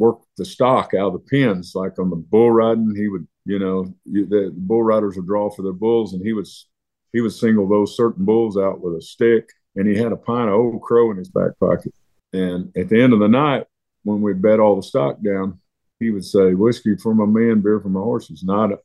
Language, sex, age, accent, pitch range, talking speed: English, male, 50-69, American, 95-115 Hz, 240 wpm